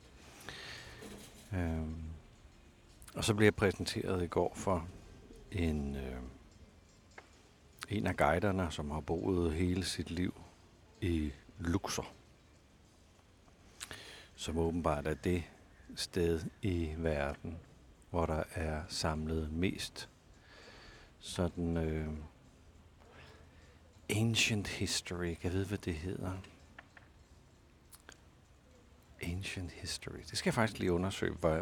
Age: 60-79